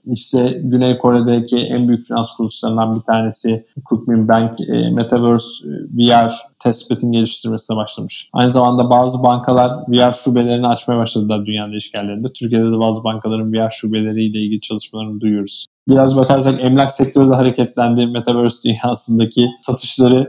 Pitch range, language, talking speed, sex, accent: 115-135 Hz, Turkish, 135 wpm, male, native